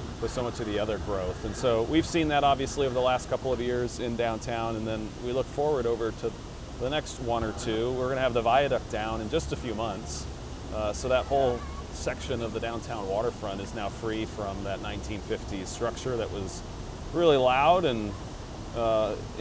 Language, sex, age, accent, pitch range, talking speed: English, male, 30-49, American, 110-130 Hz, 205 wpm